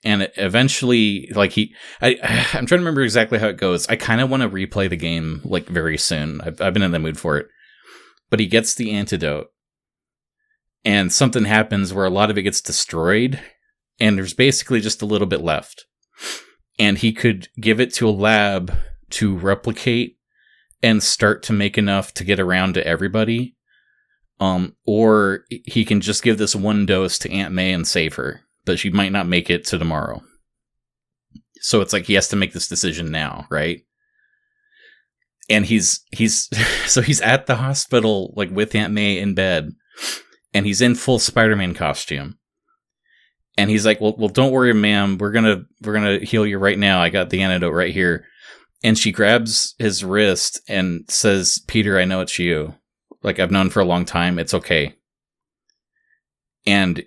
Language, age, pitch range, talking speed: English, 30-49, 95-115 Hz, 185 wpm